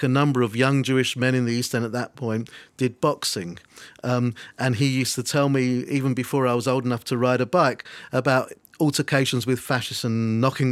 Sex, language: male, English